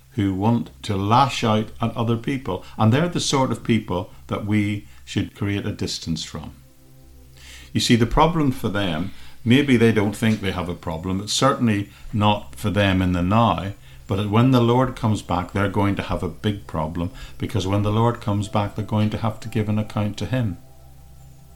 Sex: male